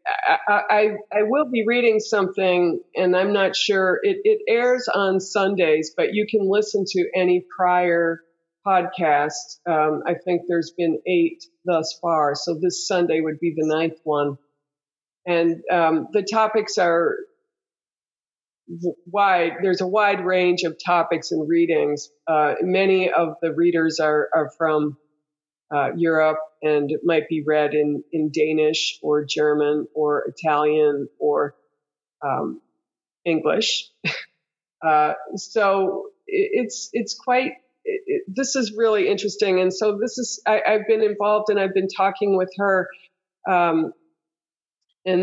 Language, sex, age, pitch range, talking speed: English, female, 50-69, 160-205 Hz, 140 wpm